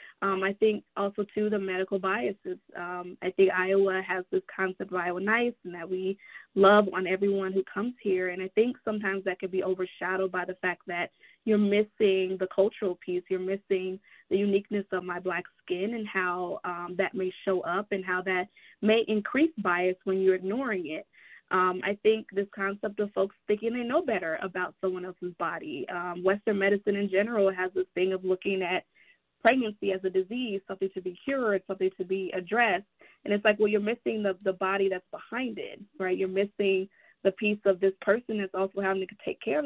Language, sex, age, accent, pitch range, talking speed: English, female, 20-39, American, 185-210 Hz, 205 wpm